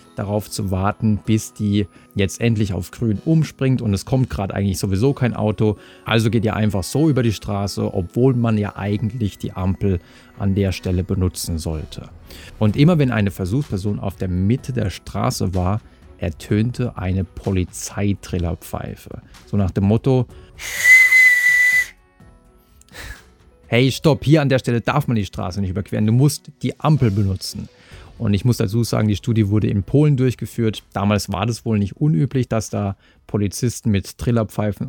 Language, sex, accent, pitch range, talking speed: German, male, German, 100-125 Hz, 160 wpm